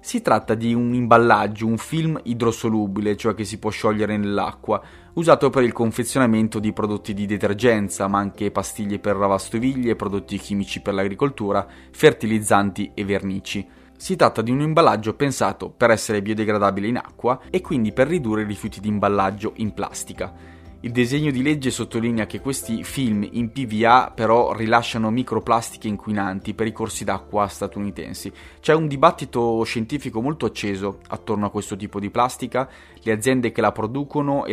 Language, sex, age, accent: Italian, male, 20-39, native